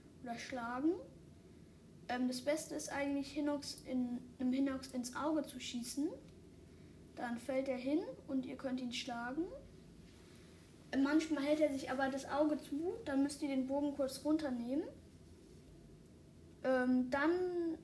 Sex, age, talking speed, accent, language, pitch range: female, 10-29, 130 wpm, German, German, 255-290 Hz